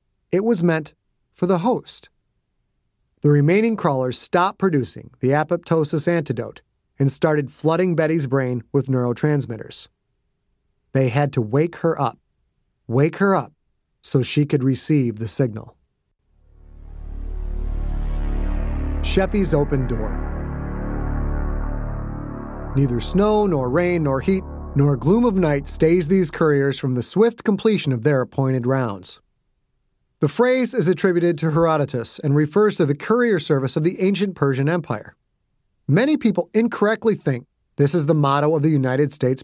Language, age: English, 30-49